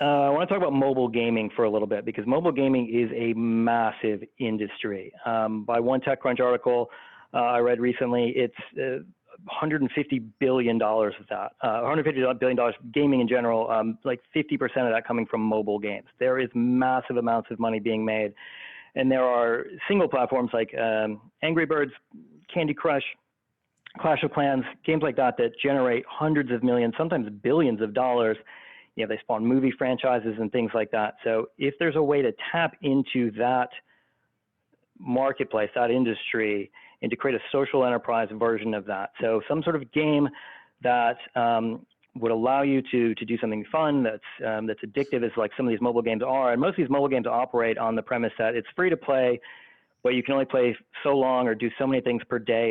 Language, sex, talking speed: English, male, 195 wpm